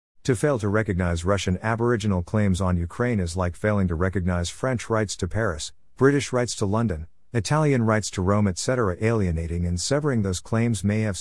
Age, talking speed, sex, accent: 50-69, 180 wpm, male, American